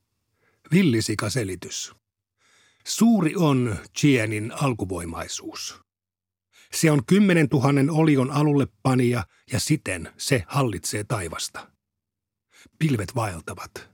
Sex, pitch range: male, 105-145 Hz